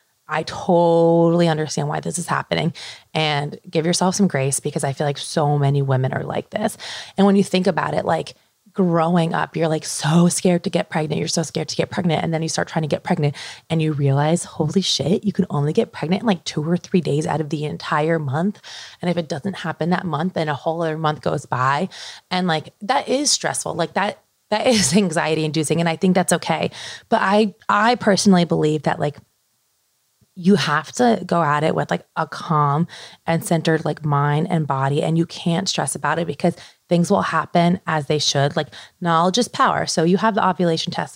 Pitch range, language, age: 155-185 Hz, English, 20-39